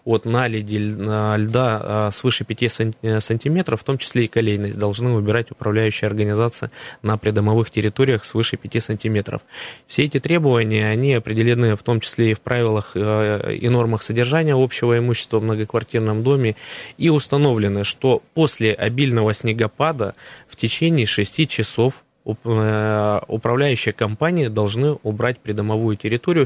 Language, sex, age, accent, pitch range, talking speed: Russian, male, 20-39, native, 105-125 Hz, 125 wpm